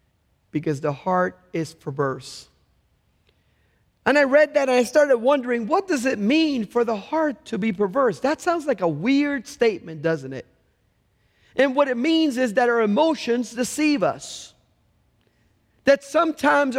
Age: 40-59